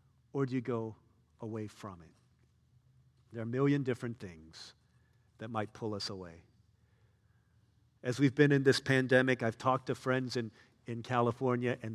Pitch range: 115-140 Hz